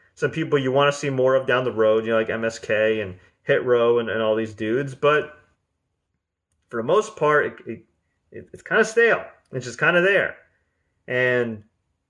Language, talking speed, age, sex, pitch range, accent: English, 190 wpm, 30-49, male, 120-160 Hz, American